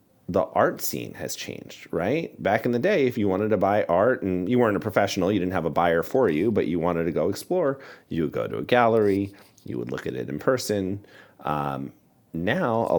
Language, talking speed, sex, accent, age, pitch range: English, 230 wpm, male, American, 30-49, 75-100 Hz